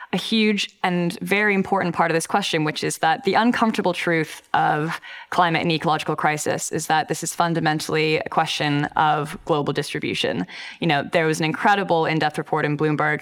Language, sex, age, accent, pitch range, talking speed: English, female, 10-29, American, 160-200 Hz, 180 wpm